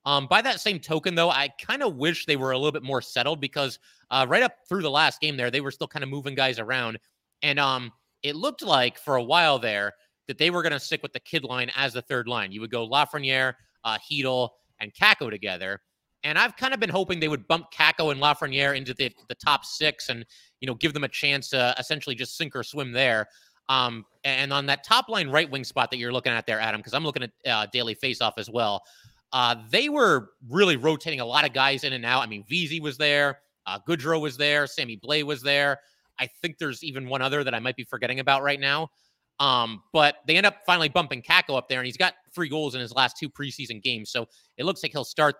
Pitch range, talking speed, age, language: 130-155 Hz, 245 wpm, 30-49, English